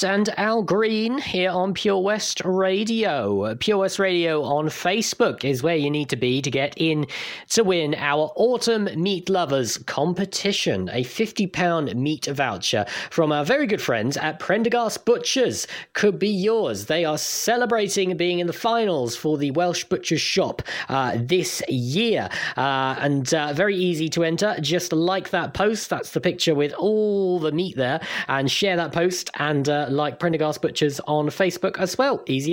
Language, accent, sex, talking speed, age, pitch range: English, British, male, 170 wpm, 20-39, 145-195 Hz